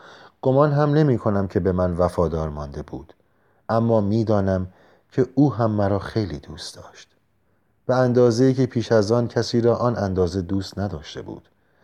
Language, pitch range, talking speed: Persian, 95-120 Hz, 155 wpm